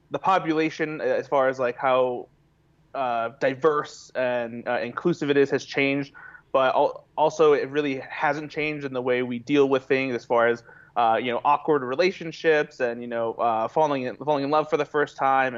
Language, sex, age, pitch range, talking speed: English, male, 20-39, 120-150 Hz, 195 wpm